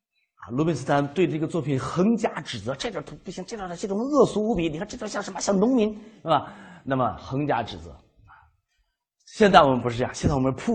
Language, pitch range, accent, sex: Chinese, 130-210 Hz, native, male